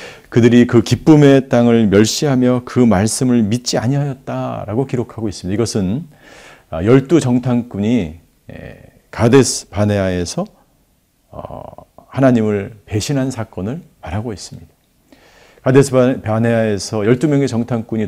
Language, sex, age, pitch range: Korean, male, 50-69, 105-135 Hz